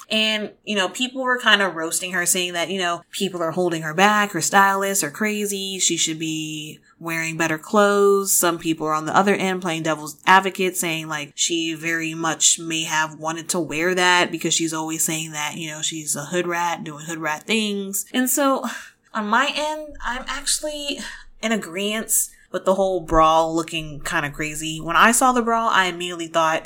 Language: English